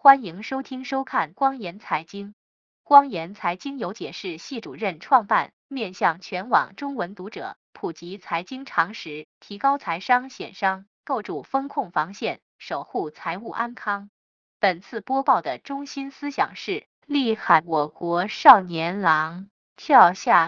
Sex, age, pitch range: female, 20-39, 180-260 Hz